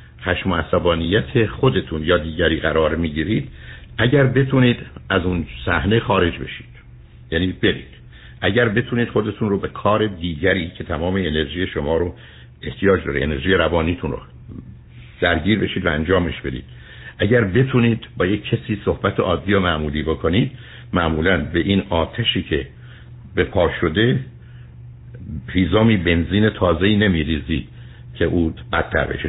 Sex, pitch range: male, 85-120 Hz